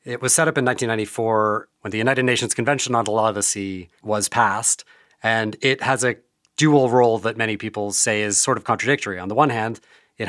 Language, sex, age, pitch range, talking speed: English, male, 30-49, 105-125 Hz, 220 wpm